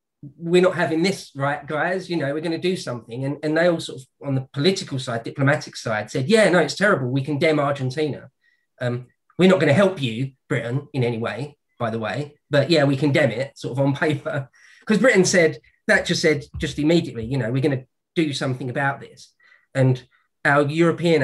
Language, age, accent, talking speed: English, 20-39, British, 215 wpm